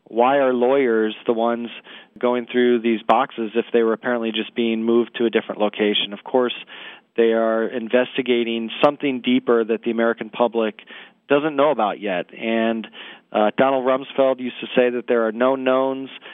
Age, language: 40-59, English